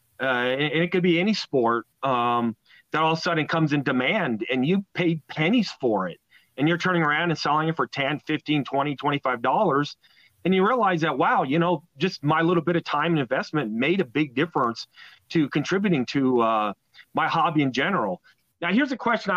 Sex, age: male, 40-59